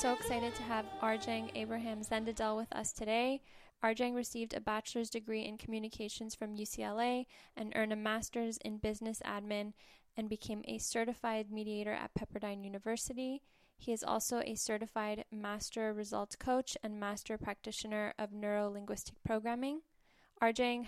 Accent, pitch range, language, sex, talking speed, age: American, 210-235 Hz, English, female, 140 wpm, 10-29